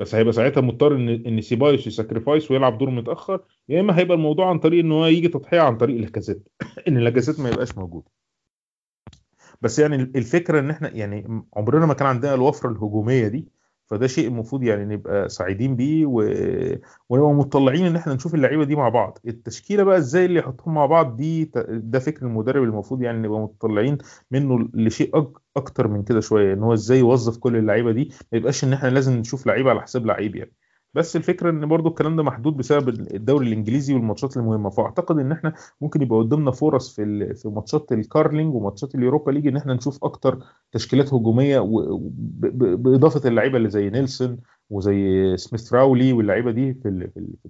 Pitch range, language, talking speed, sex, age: 115-150 Hz, Arabic, 175 wpm, male, 30-49